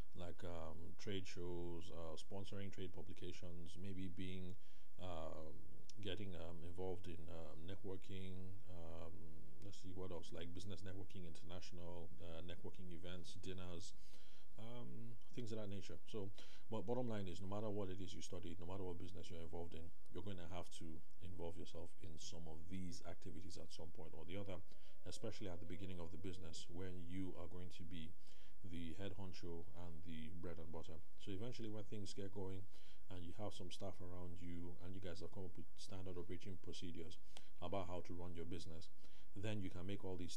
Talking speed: 190 wpm